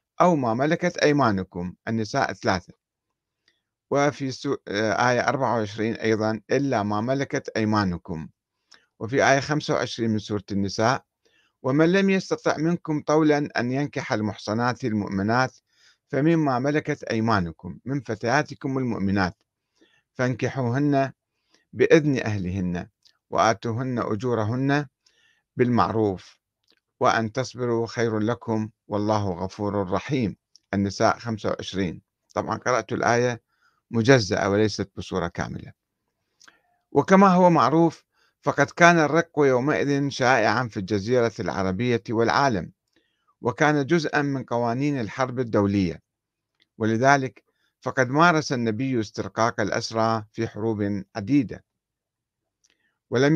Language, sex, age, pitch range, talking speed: Arabic, male, 50-69, 105-140 Hz, 95 wpm